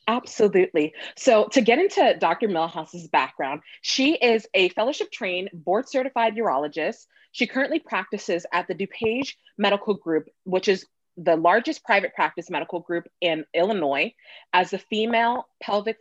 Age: 20-39